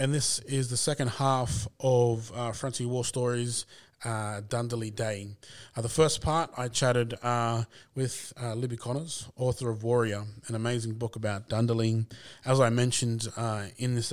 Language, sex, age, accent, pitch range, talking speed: English, male, 20-39, Australian, 110-125 Hz, 165 wpm